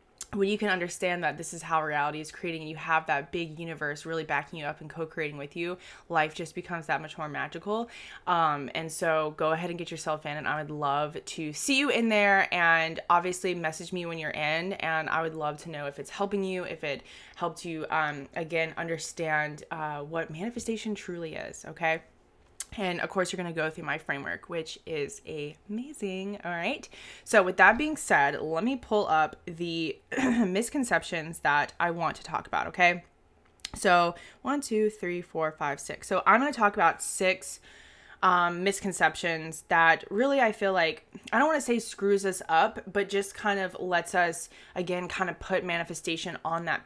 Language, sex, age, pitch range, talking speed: English, female, 20-39, 160-195 Hz, 200 wpm